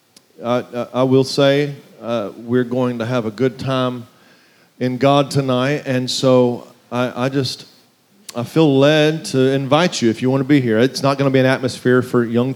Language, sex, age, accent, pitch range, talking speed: English, male, 40-59, American, 120-140 Hz, 195 wpm